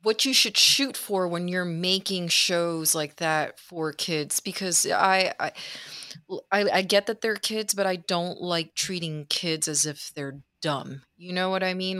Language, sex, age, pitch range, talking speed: English, female, 30-49, 150-180 Hz, 185 wpm